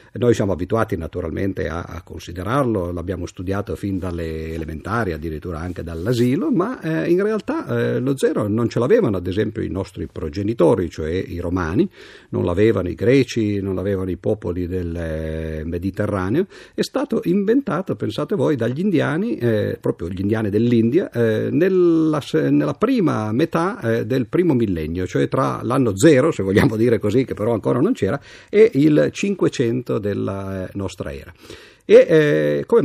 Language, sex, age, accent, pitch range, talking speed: Italian, male, 50-69, native, 90-120 Hz, 160 wpm